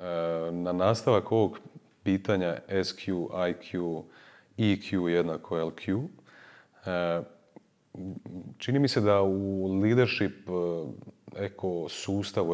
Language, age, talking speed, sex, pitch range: Croatian, 30-49, 75 wpm, male, 85-110 Hz